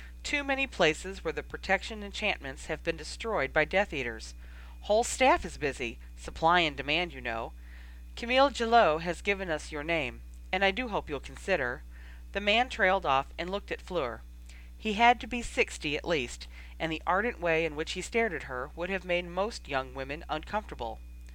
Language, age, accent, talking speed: English, 40-59, American, 190 wpm